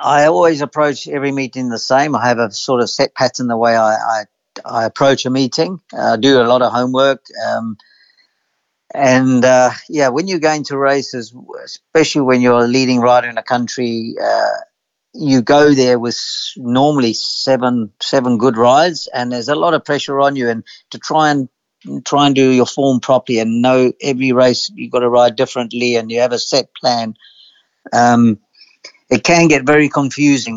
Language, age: English, 50-69